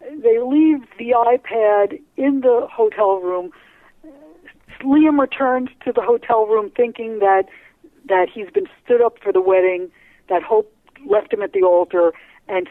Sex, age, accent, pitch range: female, 60-79, American, 205-315 Hz